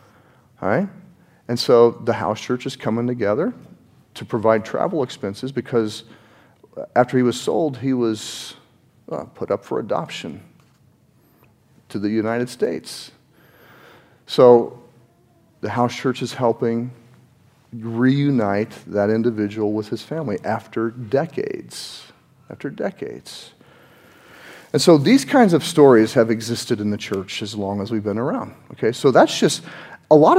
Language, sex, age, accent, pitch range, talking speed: English, male, 40-59, American, 115-150 Hz, 135 wpm